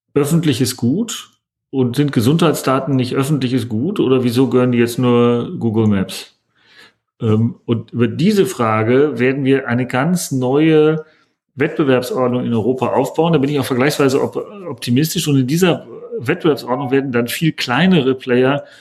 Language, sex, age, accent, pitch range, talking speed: German, male, 40-59, German, 120-145 Hz, 140 wpm